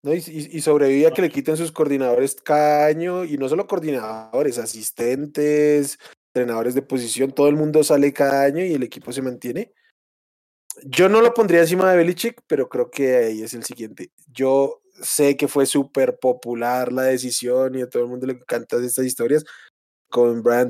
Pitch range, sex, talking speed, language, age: 125-150 Hz, male, 185 wpm, Spanish, 20-39